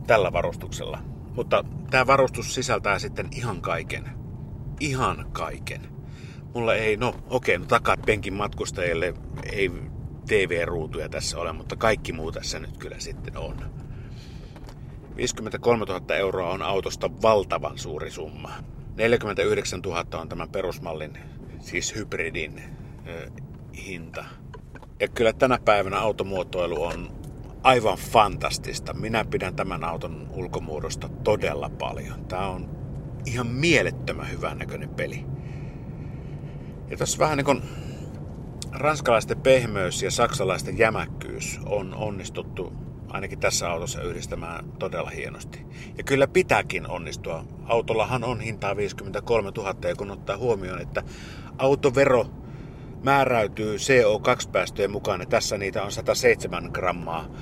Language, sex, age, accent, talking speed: Finnish, male, 50-69, native, 120 wpm